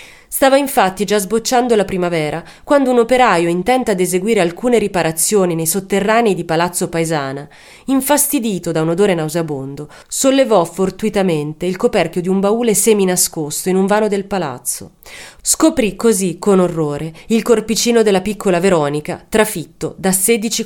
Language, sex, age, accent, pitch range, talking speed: Italian, female, 30-49, native, 170-225 Hz, 145 wpm